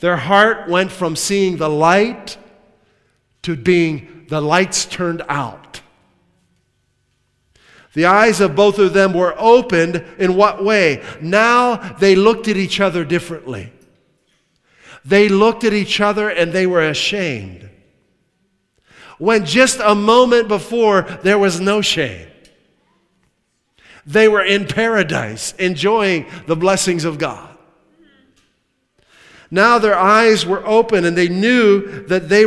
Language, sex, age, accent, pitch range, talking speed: English, male, 50-69, American, 145-205 Hz, 125 wpm